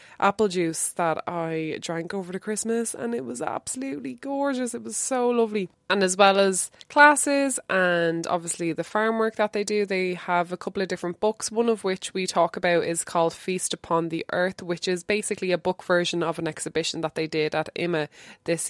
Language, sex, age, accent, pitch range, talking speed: English, female, 20-39, Irish, 170-220 Hz, 205 wpm